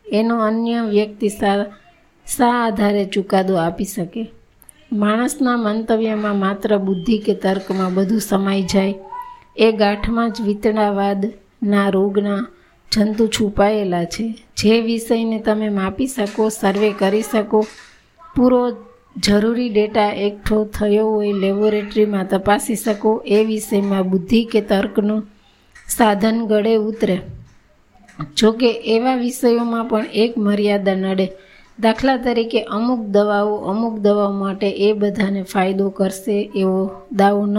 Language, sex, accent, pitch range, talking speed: Gujarati, female, native, 200-225 Hz, 95 wpm